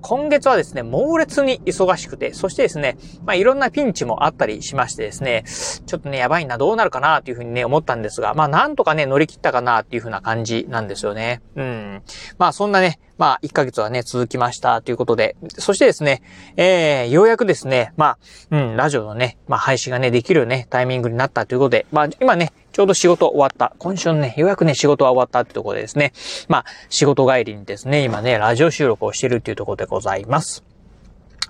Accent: native